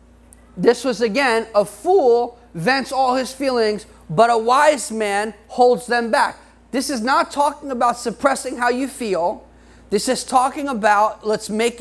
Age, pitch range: 30-49, 210-260 Hz